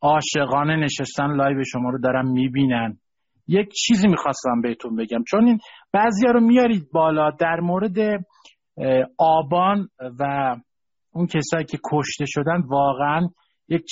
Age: 50-69